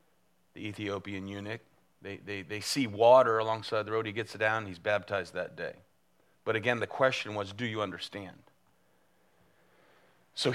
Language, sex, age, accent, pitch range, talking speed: English, male, 40-59, American, 90-125 Hz, 160 wpm